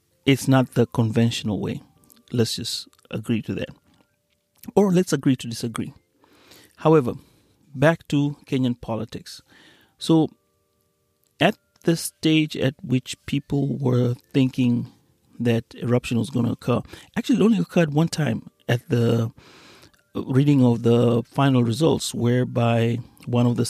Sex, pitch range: male, 120-140 Hz